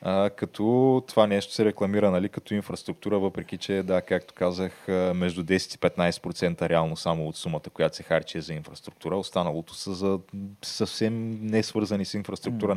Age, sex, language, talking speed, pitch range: 20-39, male, Bulgarian, 160 wpm, 90-115 Hz